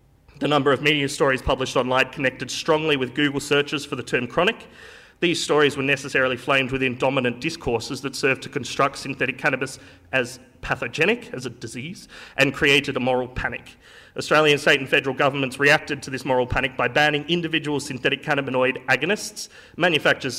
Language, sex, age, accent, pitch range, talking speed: English, male, 30-49, Australian, 130-150 Hz, 170 wpm